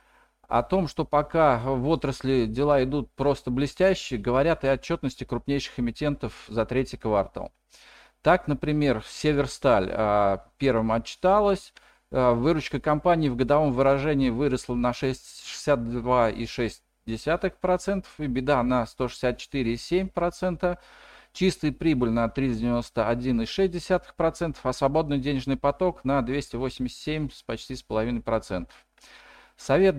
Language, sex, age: Russian, male, 40-59